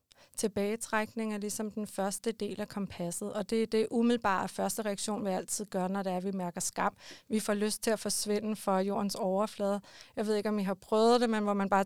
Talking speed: 235 wpm